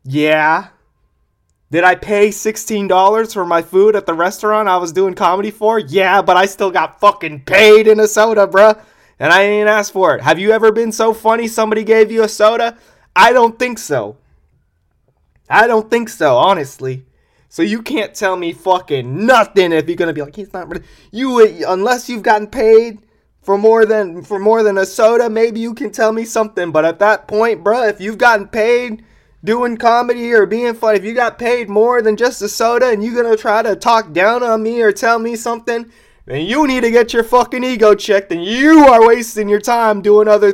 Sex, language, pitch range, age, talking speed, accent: male, English, 195-230 Hz, 20-39, 210 wpm, American